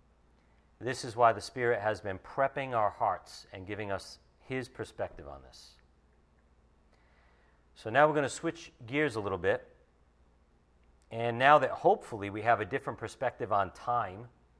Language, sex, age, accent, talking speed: English, male, 50-69, American, 155 wpm